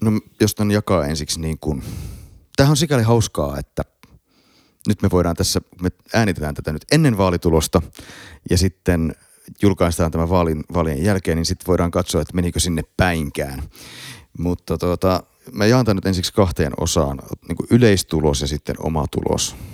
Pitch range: 80-100 Hz